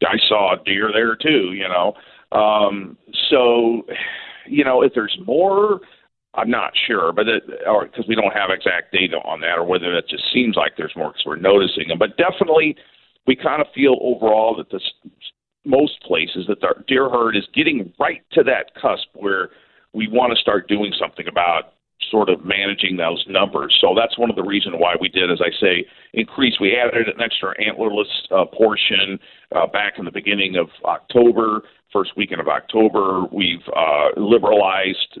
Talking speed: 185 wpm